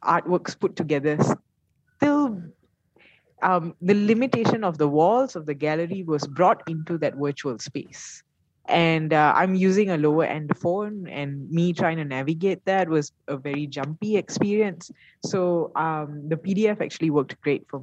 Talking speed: 155 wpm